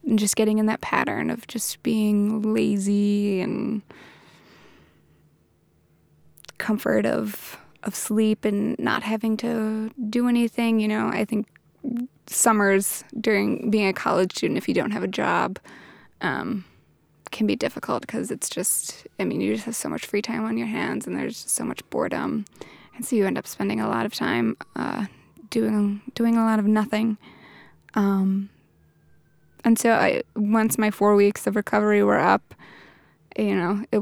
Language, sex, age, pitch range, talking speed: English, female, 20-39, 200-225 Hz, 165 wpm